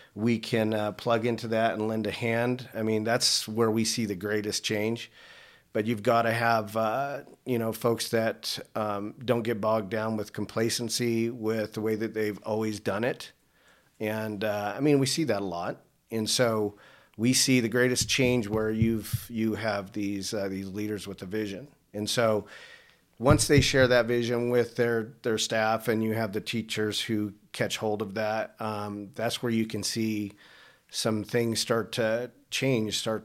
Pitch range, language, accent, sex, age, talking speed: 110-120 Hz, English, American, male, 40-59, 190 wpm